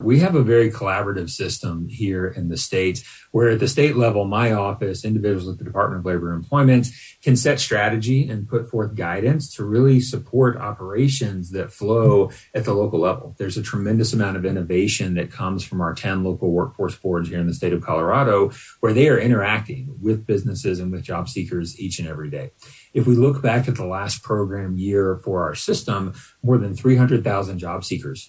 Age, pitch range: 30-49, 90-120 Hz